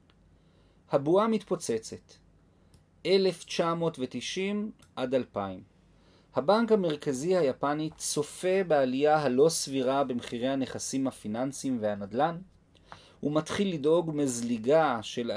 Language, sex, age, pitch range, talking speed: Hebrew, male, 40-59, 120-160 Hz, 80 wpm